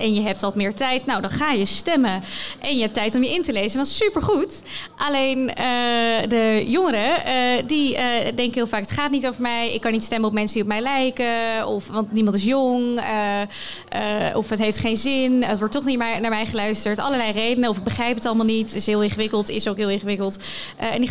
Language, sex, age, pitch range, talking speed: Dutch, female, 20-39, 215-250 Hz, 245 wpm